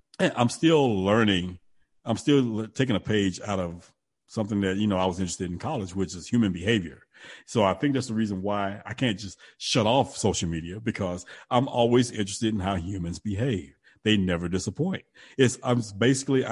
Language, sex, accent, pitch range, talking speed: English, male, American, 95-120 Hz, 190 wpm